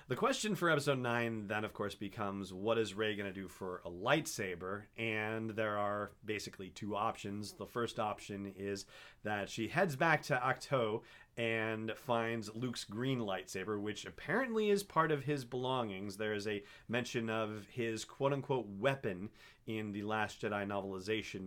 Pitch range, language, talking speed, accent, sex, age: 100-130 Hz, English, 165 wpm, American, male, 40-59